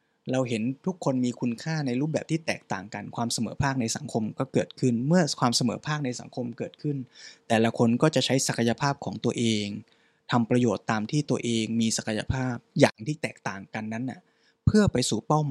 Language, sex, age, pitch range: Thai, male, 20-39, 120-160 Hz